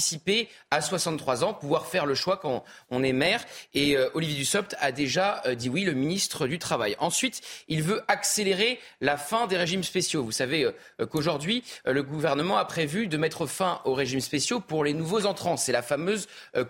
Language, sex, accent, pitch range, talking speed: French, male, French, 140-205 Hz, 200 wpm